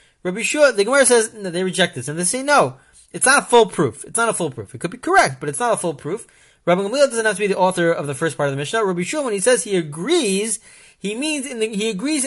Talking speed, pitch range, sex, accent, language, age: 300 wpm, 155-220 Hz, male, American, English, 40-59